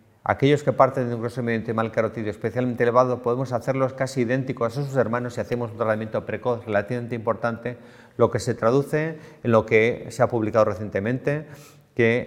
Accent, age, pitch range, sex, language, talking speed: Spanish, 40-59, 110-125 Hz, male, English, 180 wpm